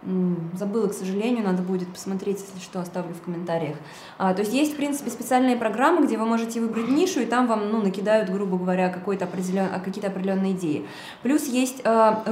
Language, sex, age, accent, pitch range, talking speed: Russian, female, 20-39, native, 195-250 Hz, 190 wpm